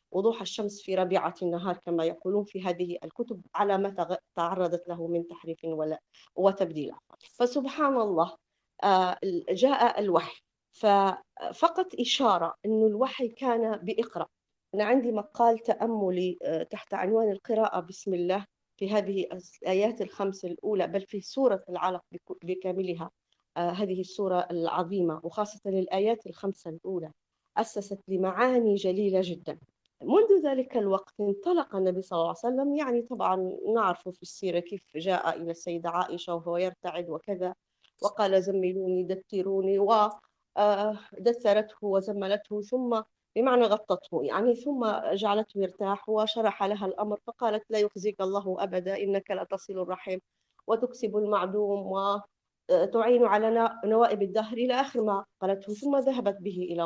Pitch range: 185-225 Hz